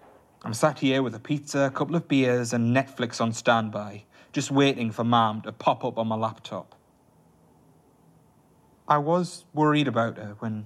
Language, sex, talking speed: English, male, 170 wpm